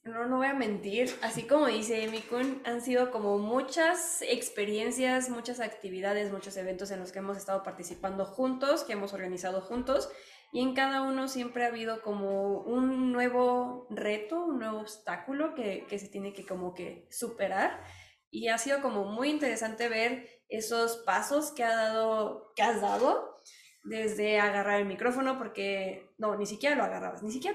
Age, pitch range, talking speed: 20-39, 210-265 Hz, 170 wpm